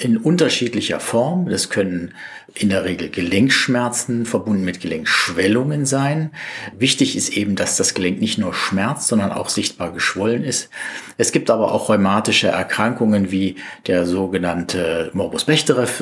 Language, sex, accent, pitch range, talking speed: German, male, German, 95-115 Hz, 140 wpm